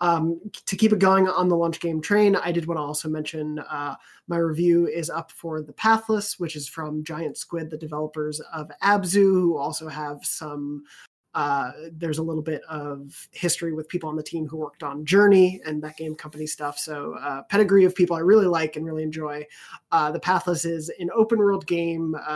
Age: 20-39